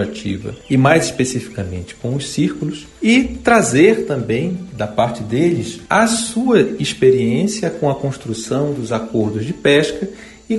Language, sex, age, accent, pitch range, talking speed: Portuguese, male, 40-59, Brazilian, 115-190 Hz, 130 wpm